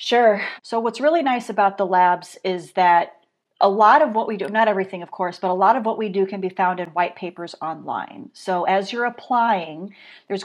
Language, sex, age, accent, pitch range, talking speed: English, female, 40-59, American, 180-215 Hz, 225 wpm